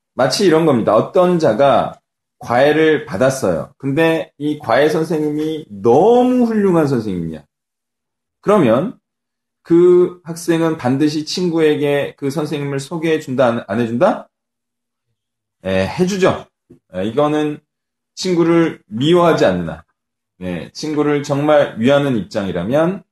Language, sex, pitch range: Korean, male, 125-185 Hz